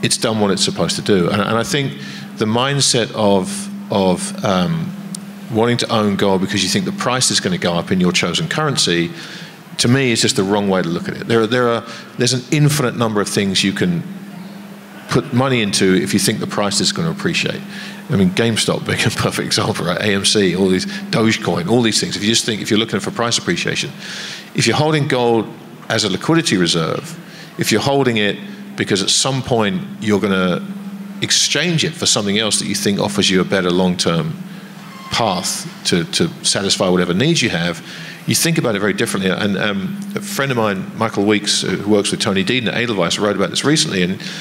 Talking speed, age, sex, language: 215 wpm, 50-69, male, English